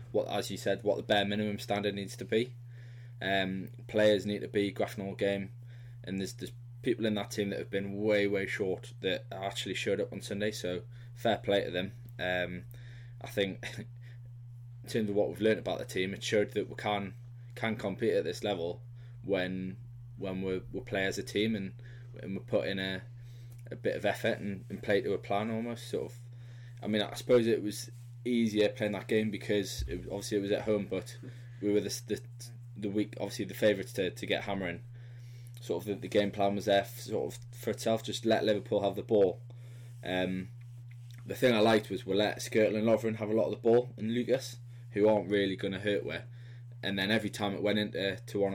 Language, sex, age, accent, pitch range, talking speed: English, male, 20-39, British, 100-120 Hz, 220 wpm